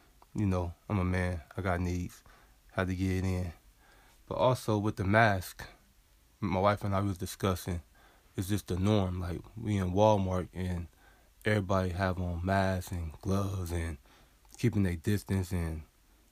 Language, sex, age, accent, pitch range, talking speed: English, male, 20-39, American, 90-100 Hz, 160 wpm